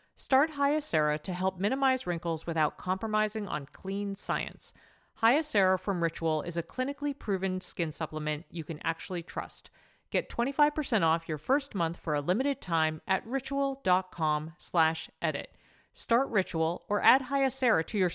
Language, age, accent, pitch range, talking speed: English, 40-59, American, 160-245 Hz, 145 wpm